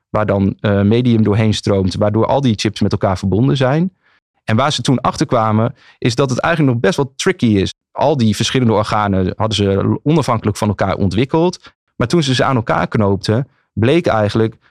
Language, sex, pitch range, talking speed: Dutch, male, 110-130 Hz, 190 wpm